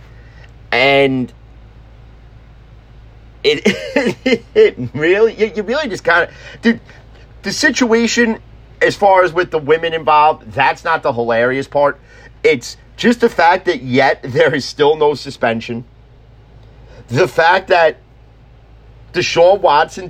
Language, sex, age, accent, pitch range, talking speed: English, male, 40-59, American, 125-205 Hz, 120 wpm